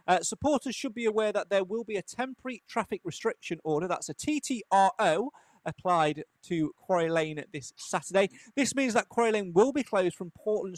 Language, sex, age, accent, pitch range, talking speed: English, male, 30-49, British, 165-220 Hz, 185 wpm